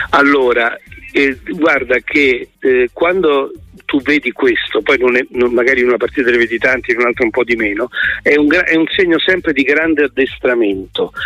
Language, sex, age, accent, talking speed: Italian, male, 50-69, native, 185 wpm